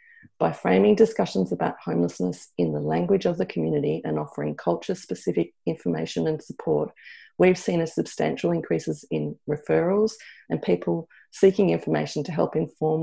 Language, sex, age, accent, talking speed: English, female, 40-59, Australian, 145 wpm